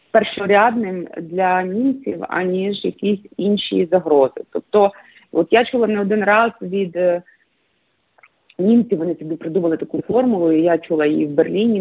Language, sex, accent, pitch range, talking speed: Ukrainian, female, native, 180-245 Hz, 135 wpm